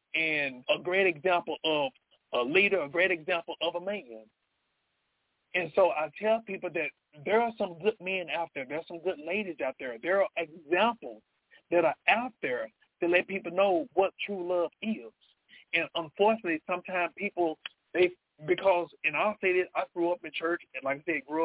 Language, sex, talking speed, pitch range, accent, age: English, male, 185 wpm, 165-200 Hz, American, 40-59